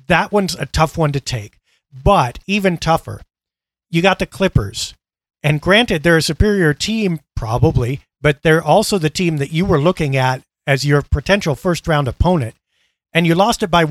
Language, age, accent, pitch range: English, 40-59, American, 145-190 Hz